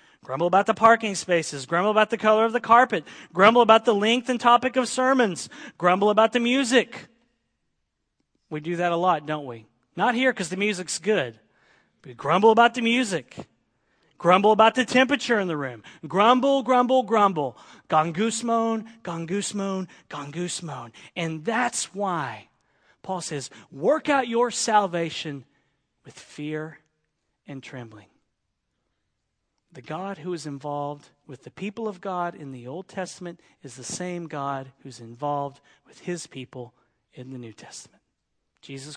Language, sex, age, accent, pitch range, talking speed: English, male, 40-59, American, 140-210 Hz, 155 wpm